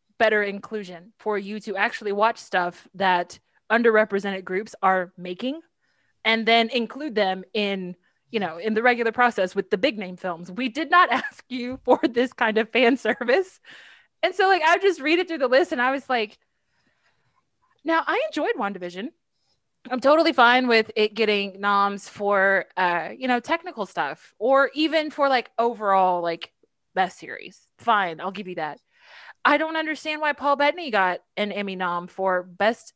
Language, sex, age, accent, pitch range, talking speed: English, female, 20-39, American, 195-275 Hz, 175 wpm